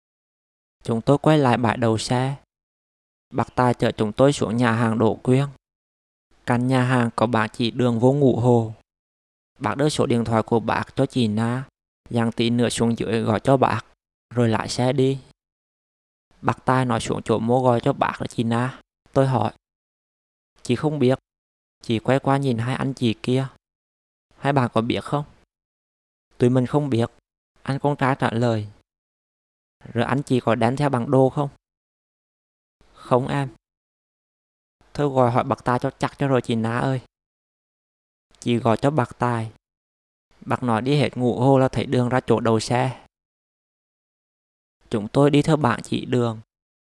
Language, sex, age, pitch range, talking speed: Vietnamese, male, 20-39, 110-130 Hz, 175 wpm